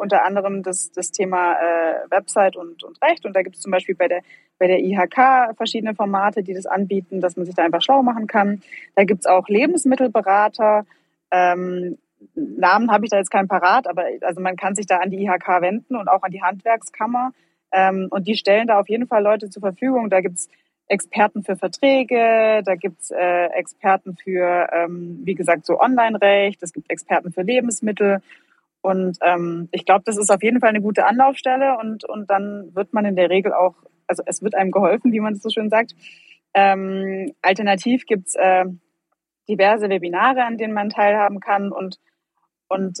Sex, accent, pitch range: female, German, 185-225 Hz